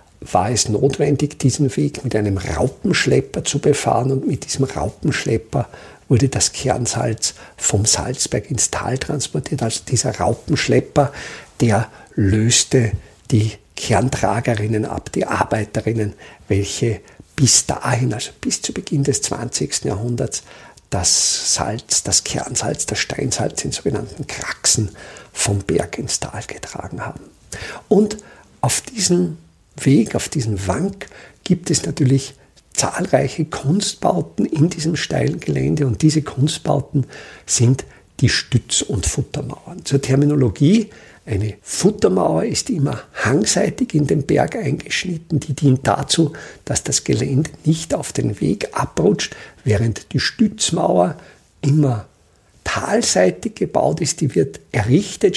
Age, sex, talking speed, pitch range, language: 50-69, male, 120 wpm, 110-150 Hz, German